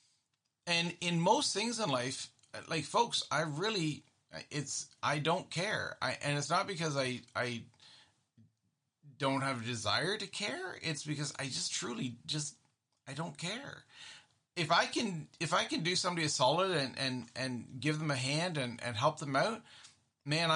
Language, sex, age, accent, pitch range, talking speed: English, male, 30-49, American, 120-150 Hz, 170 wpm